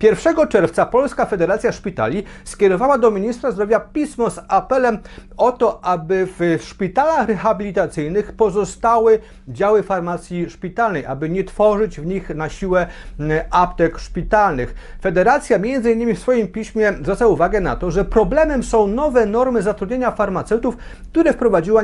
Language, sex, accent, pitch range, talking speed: Polish, male, native, 180-230 Hz, 135 wpm